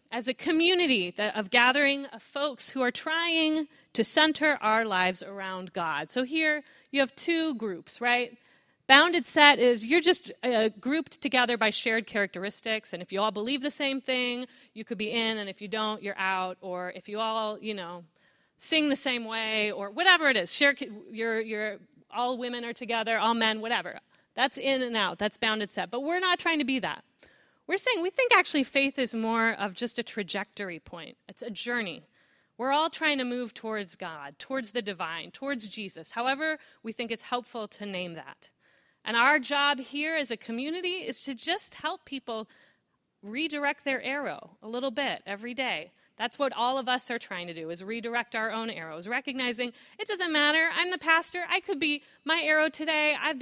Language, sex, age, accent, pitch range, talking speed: English, female, 30-49, American, 215-290 Hz, 195 wpm